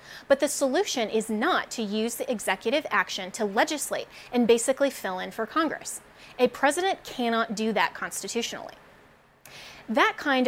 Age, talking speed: 20-39, 150 wpm